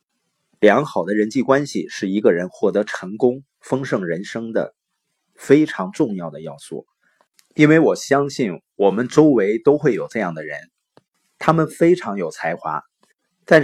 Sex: male